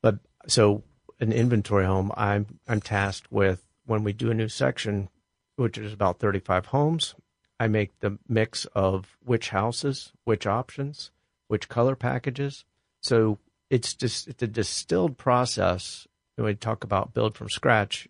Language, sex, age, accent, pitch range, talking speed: English, male, 50-69, American, 100-120 Hz, 155 wpm